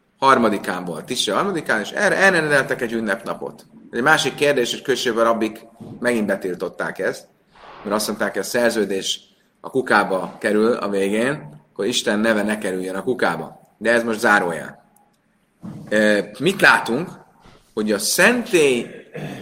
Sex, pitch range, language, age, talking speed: male, 105-135 Hz, Hungarian, 30-49, 135 wpm